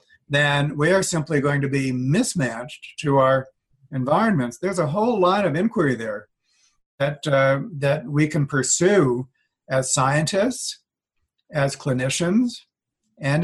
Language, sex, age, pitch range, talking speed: English, male, 60-79, 130-155 Hz, 130 wpm